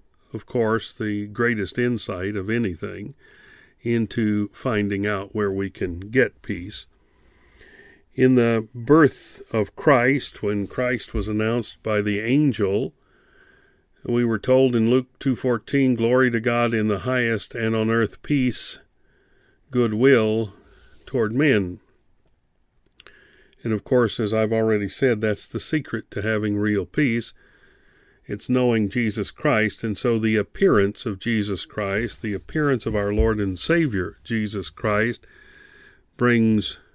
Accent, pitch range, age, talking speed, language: American, 105-125 Hz, 50-69, 135 wpm, English